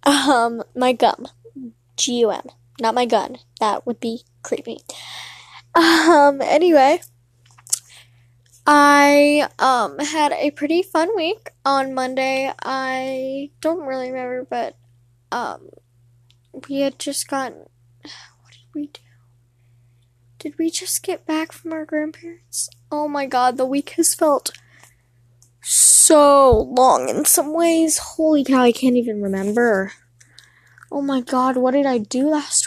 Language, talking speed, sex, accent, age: English, 130 wpm, female, American, 10-29